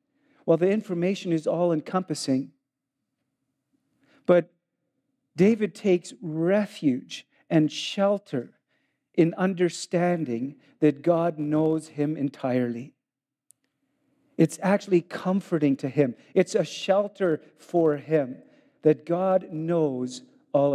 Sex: male